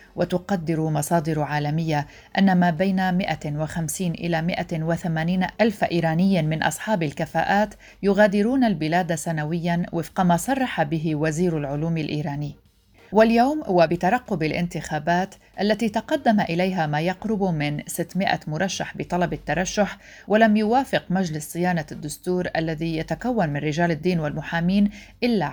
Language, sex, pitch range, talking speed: Arabic, female, 155-190 Hz, 115 wpm